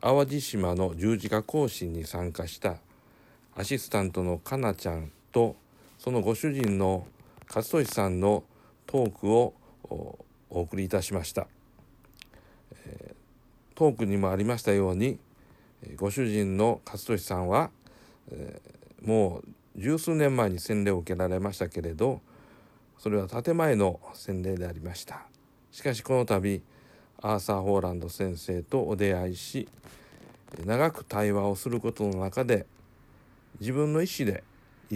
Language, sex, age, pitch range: Japanese, male, 50-69, 95-120 Hz